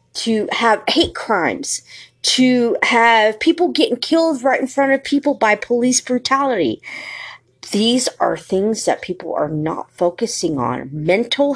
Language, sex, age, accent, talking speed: English, female, 40-59, American, 140 wpm